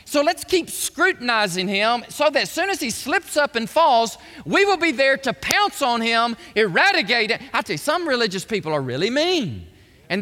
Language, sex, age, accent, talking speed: English, male, 40-59, American, 205 wpm